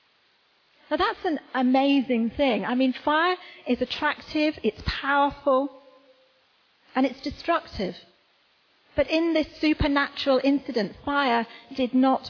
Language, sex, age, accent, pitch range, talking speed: English, female, 40-59, British, 235-285 Hz, 110 wpm